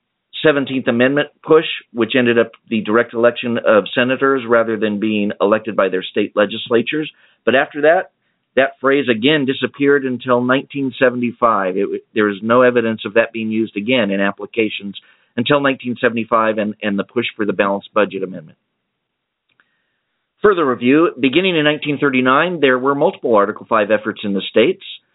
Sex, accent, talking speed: male, American, 155 wpm